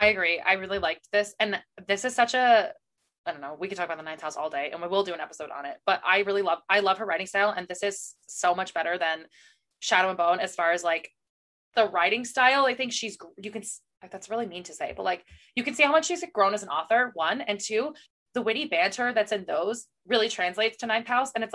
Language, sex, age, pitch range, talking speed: English, female, 20-39, 180-230 Hz, 265 wpm